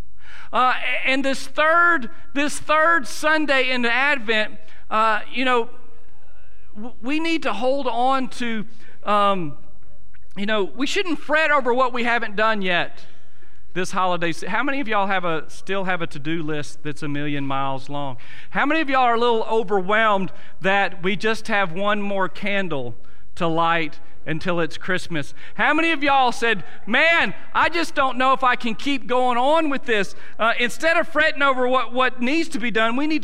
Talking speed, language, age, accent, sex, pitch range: 180 wpm, English, 40-59, American, male, 155-250 Hz